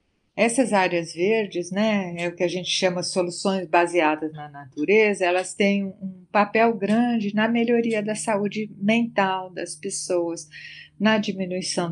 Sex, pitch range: female, 175-220 Hz